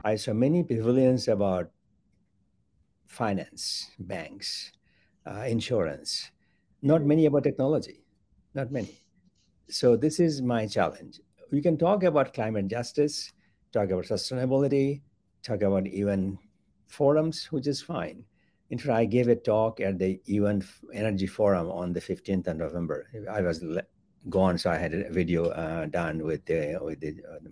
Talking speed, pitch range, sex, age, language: 150 wpm, 95-135 Hz, male, 60-79, English